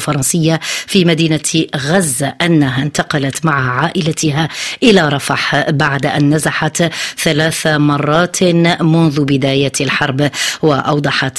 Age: 30-49